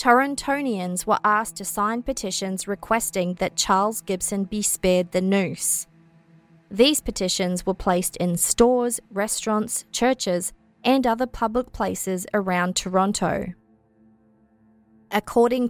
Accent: Australian